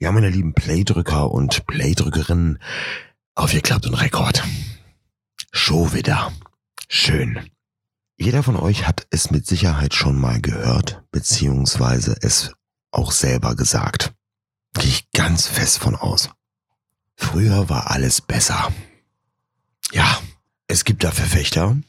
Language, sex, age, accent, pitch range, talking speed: German, male, 40-59, German, 80-110 Hz, 120 wpm